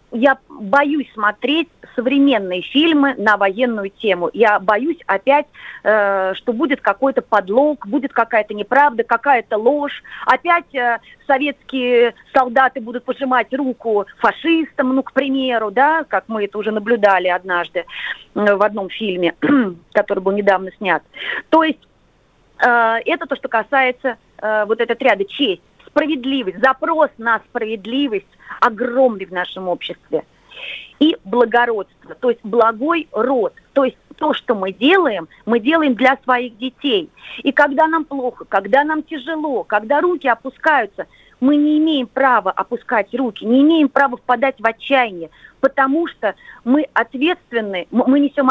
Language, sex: Russian, female